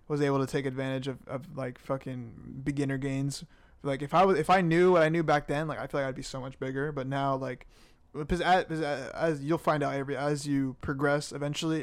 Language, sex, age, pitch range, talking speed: English, male, 20-39, 135-150 Hz, 230 wpm